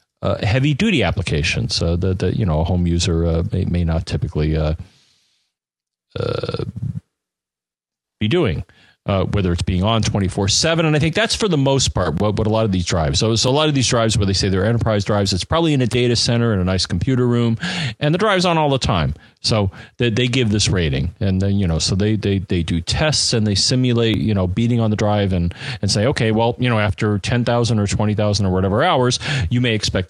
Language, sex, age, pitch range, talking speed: English, male, 40-59, 95-130 Hz, 230 wpm